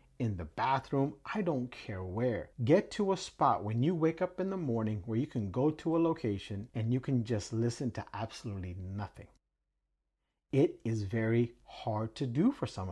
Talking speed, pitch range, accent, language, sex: 190 wpm, 110-155 Hz, American, English, male